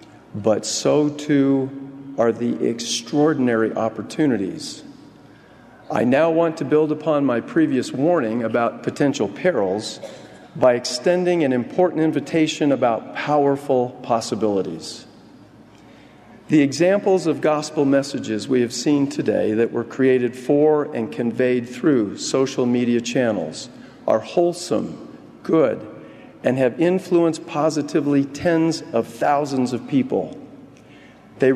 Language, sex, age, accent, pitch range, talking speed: English, male, 50-69, American, 125-155 Hz, 110 wpm